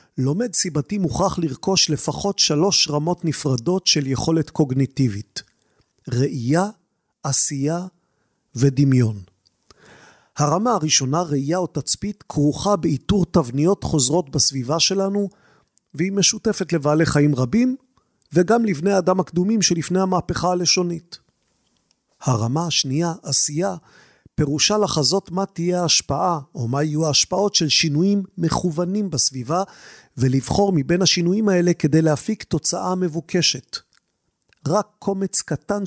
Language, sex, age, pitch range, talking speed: Hebrew, male, 40-59, 145-185 Hz, 105 wpm